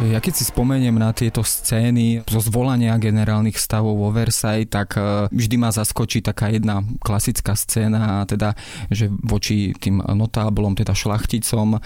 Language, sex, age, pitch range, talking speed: Slovak, male, 20-39, 105-115 Hz, 145 wpm